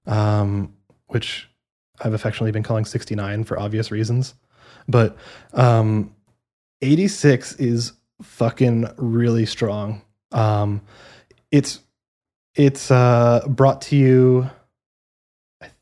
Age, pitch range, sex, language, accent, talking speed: 20-39, 110-140 Hz, male, English, American, 95 wpm